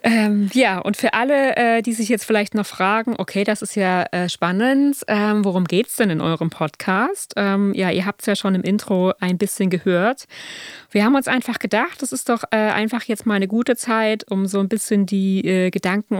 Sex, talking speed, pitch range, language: female, 220 wpm, 185-220 Hz, German